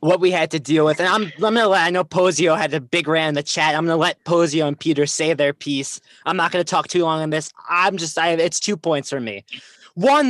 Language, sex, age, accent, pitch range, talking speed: English, male, 20-39, American, 145-190 Hz, 275 wpm